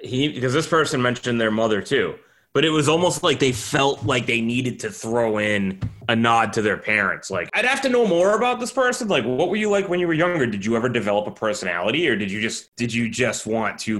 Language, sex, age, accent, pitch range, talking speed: English, male, 20-39, American, 110-135 Hz, 255 wpm